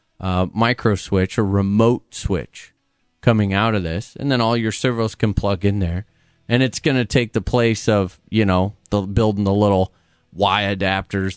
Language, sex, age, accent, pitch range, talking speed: English, male, 30-49, American, 95-125 Hz, 190 wpm